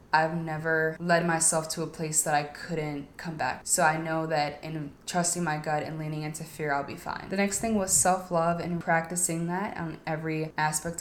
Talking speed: 205 wpm